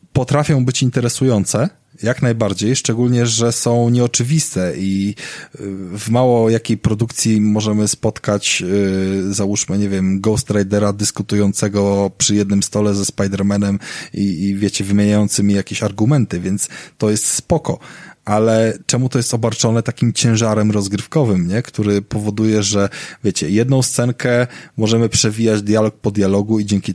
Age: 20-39